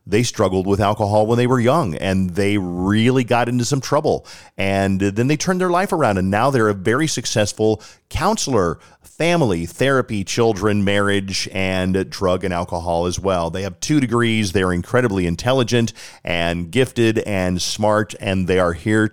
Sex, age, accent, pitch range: male, 40-59, American, 90-115 Hz